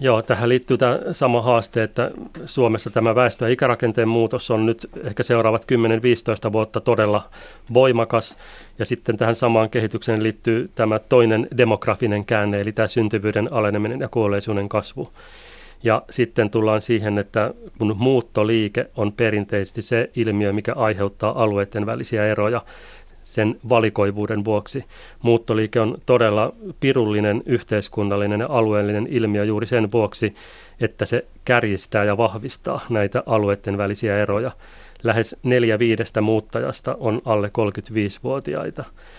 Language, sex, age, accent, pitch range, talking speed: Finnish, male, 30-49, native, 105-120 Hz, 125 wpm